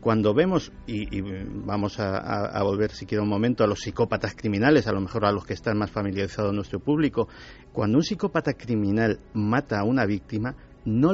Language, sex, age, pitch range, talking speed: Spanish, male, 50-69, 105-140 Hz, 200 wpm